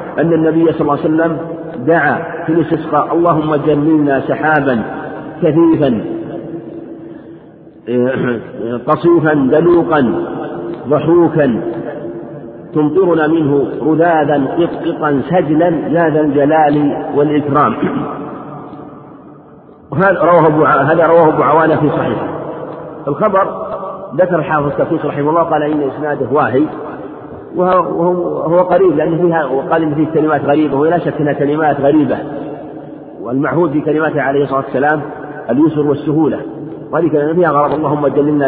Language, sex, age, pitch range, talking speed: Arabic, male, 50-69, 145-165 Hz, 110 wpm